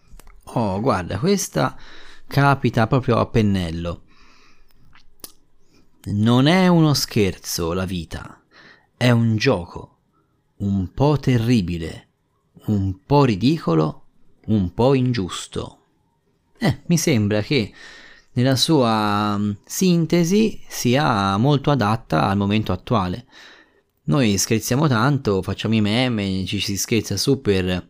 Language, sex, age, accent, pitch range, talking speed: Italian, male, 30-49, native, 100-135 Hz, 105 wpm